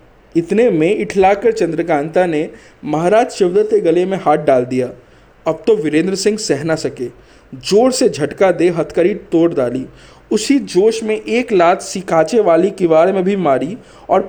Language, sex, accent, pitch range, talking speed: Hindi, male, native, 155-215 Hz, 165 wpm